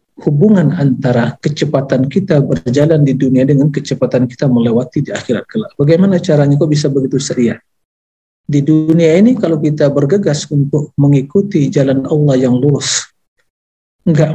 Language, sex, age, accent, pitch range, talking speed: Indonesian, male, 50-69, native, 130-155 Hz, 140 wpm